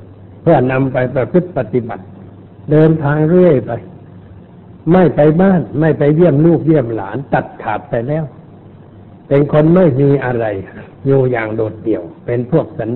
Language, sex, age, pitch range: Thai, male, 60-79, 110-150 Hz